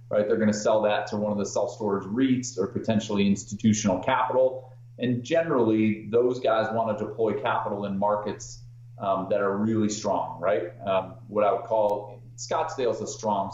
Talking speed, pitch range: 180 wpm, 105-120 Hz